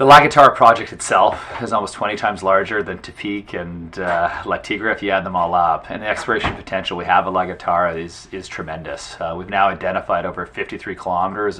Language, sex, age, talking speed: English, male, 30-49, 200 wpm